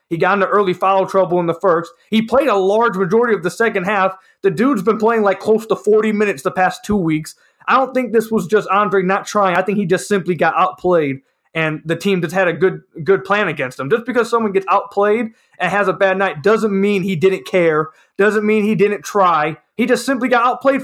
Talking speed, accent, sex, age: 240 wpm, American, male, 20-39